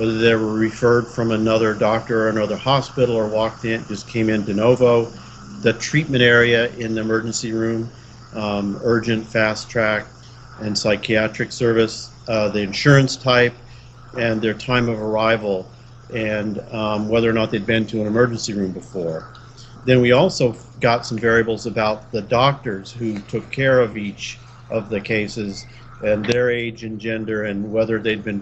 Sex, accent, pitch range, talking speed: male, American, 110-120 Hz, 165 wpm